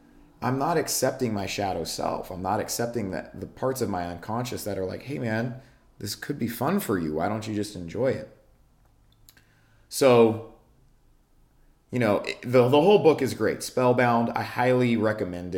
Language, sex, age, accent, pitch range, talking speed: English, male, 30-49, American, 95-120 Hz, 175 wpm